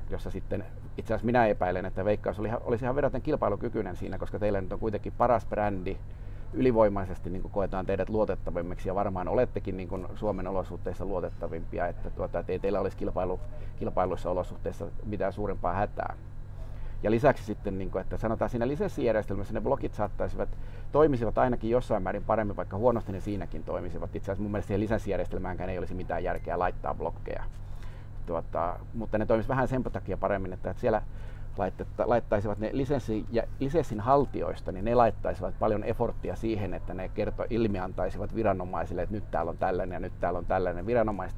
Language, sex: Finnish, male